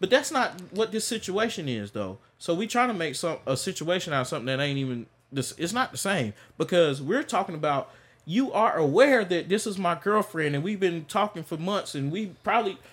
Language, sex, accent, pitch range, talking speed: English, male, American, 140-230 Hz, 220 wpm